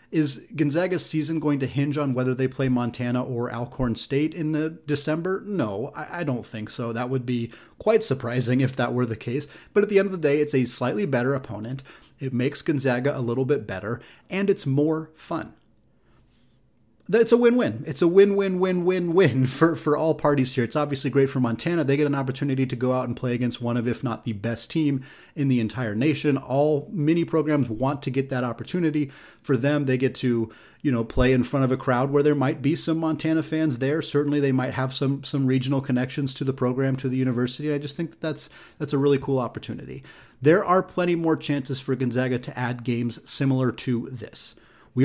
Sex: male